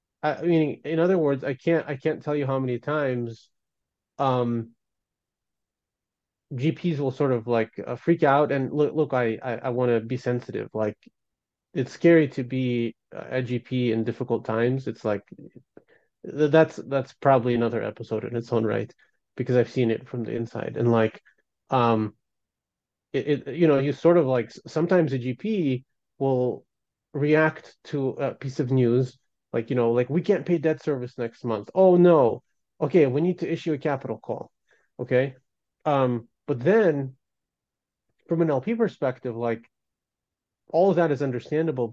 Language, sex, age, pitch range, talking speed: English, male, 30-49, 120-155 Hz, 165 wpm